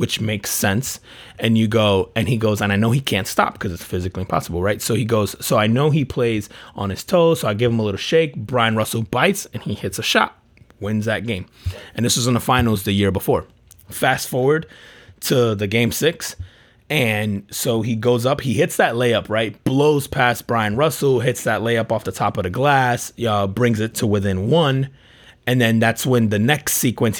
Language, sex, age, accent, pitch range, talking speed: English, male, 30-49, American, 105-125 Hz, 220 wpm